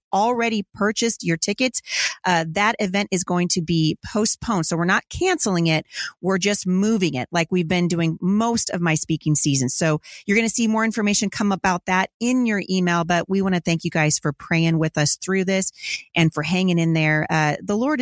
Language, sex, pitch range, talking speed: English, female, 165-205 Hz, 215 wpm